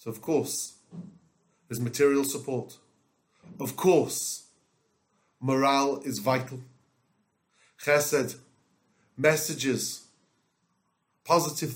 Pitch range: 135-170 Hz